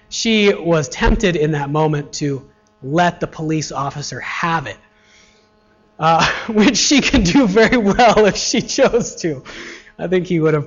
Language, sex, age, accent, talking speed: English, male, 30-49, American, 165 wpm